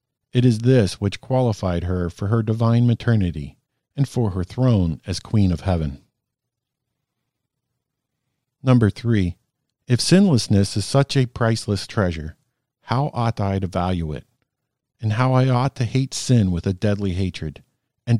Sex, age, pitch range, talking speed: male, 50-69, 100-130 Hz, 150 wpm